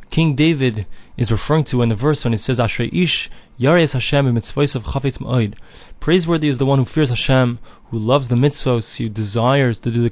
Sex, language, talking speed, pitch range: male, English, 195 wpm, 115-140 Hz